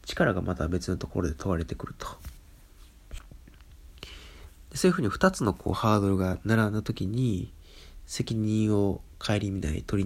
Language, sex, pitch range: Japanese, male, 75-115 Hz